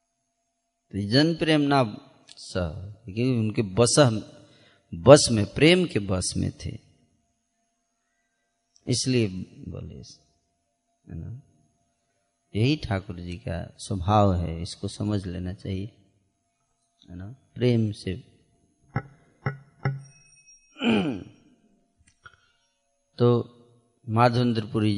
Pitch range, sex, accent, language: 100-130 Hz, male, native, Hindi